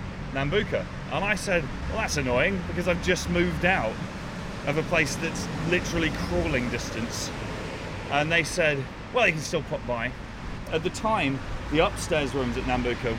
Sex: male